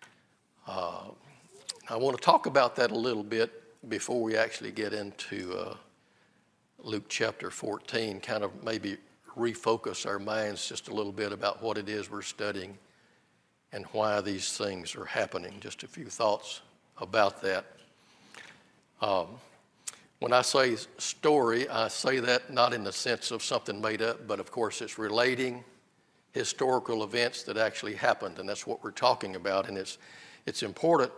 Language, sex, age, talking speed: English, male, 50-69, 160 wpm